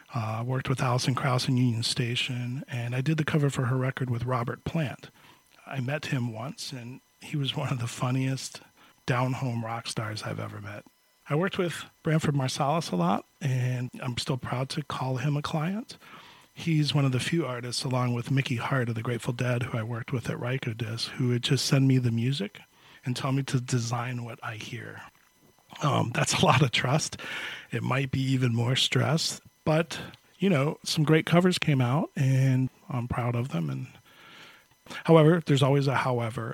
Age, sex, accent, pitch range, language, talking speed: 40-59, male, American, 120-145 Hz, English, 195 wpm